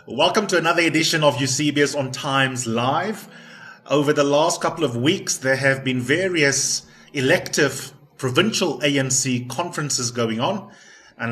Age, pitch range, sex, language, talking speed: 30-49, 120-150 Hz, male, English, 140 wpm